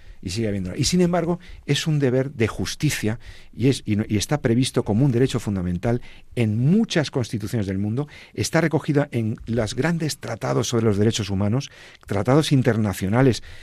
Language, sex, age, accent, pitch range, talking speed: Spanish, male, 50-69, Spanish, 95-125 Hz, 170 wpm